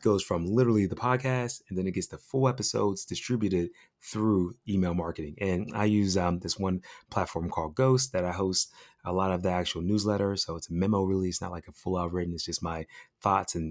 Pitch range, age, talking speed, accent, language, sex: 90-105 Hz, 30-49, 220 wpm, American, English, male